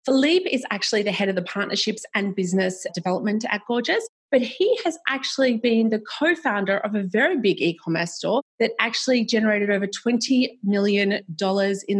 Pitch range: 185-230 Hz